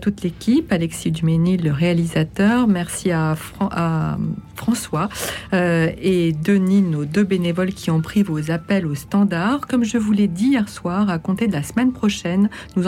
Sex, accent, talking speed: female, French, 175 wpm